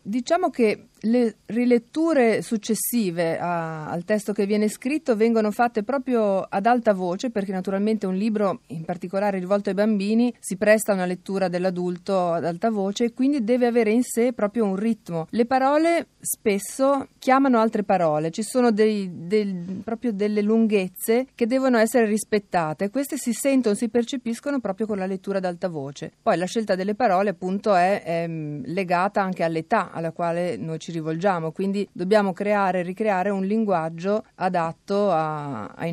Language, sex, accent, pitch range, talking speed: Italian, female, native, 170-220 Hz, 165 wpm